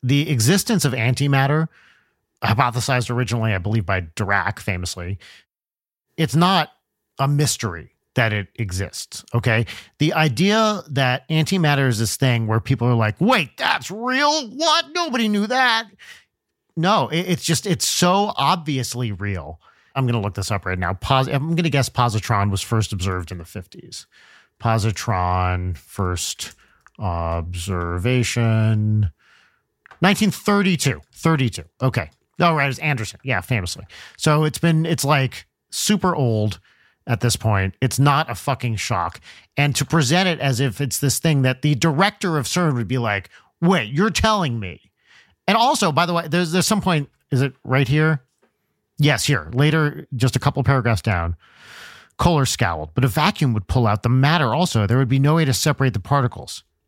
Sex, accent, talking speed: male, American, 160 wpm